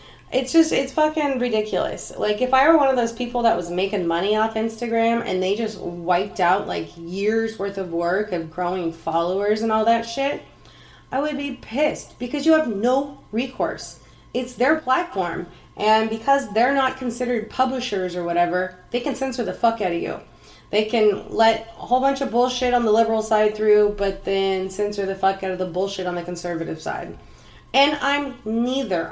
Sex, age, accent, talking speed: female, 30-49, American, 190 wpm